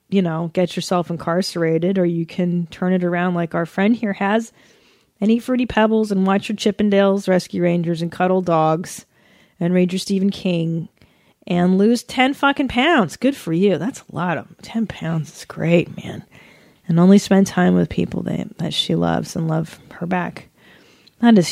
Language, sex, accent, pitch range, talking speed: English, female, American, 165-205 Hz, 185 wpm